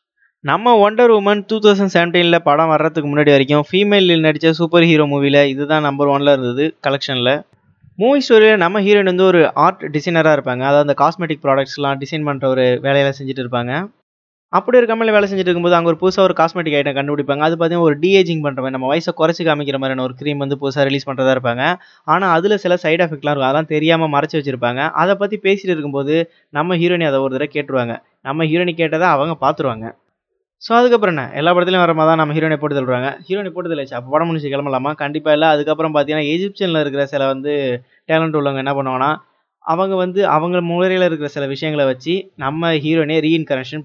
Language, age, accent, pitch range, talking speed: Tamil, 20-39, native, 140-175 Hz, 190 wpm